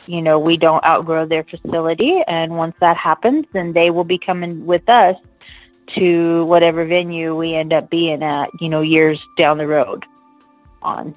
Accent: American